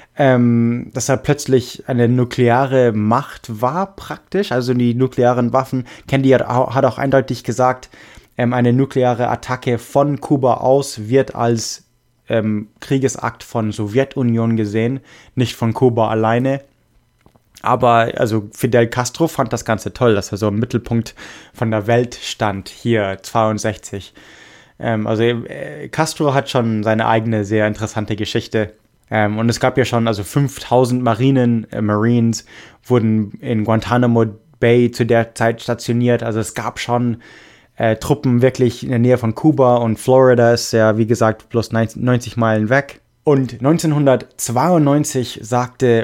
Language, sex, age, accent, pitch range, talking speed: English, male, 20-39, German, 115-130 Hz, 140 wpm